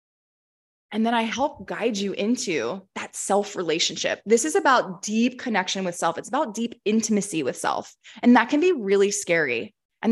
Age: 20-39